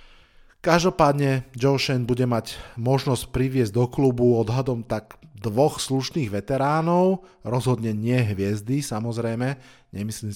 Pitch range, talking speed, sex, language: 105-125 Hz, 110 wpm, male, Slovak